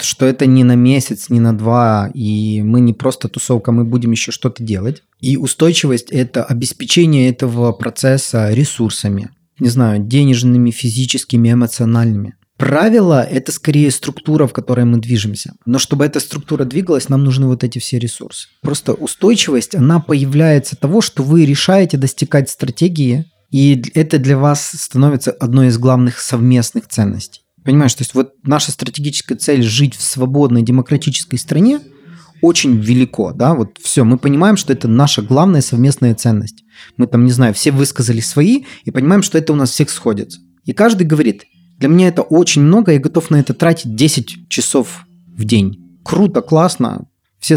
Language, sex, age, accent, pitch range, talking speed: Russian, male, 20-39, native, 120-155 Hz, 165 wpm